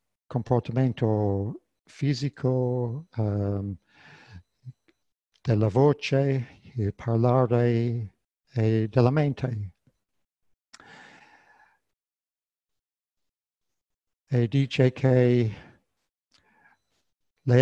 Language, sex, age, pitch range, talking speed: Italian, male, 60-79, 110-140 Hz, 40 wpm